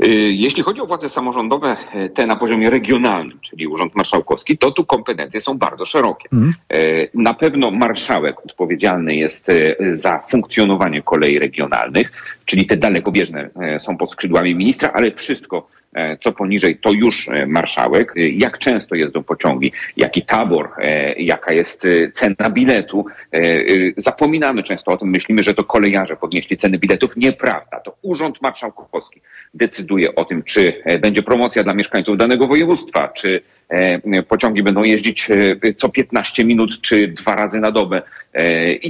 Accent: native